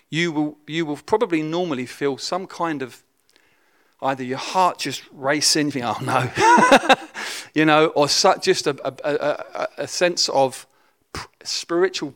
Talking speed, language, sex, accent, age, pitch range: 145 wpm, English, male, British, 40-59, 135-180 Hz